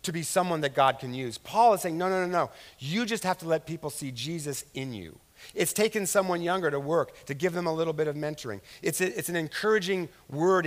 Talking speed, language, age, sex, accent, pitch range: 240 wpm, English, 50-69, male, American, 140-185 Hz